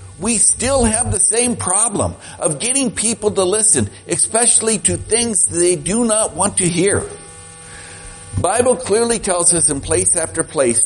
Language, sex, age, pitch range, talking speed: English, male, 60-79, 100-160 Hz, 160 wpm